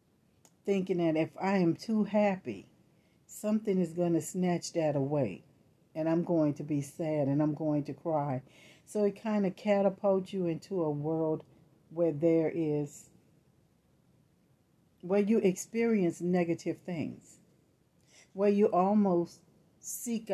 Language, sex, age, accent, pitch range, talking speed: English, female, 60-79, American, 155-180 Hz, 135 wpm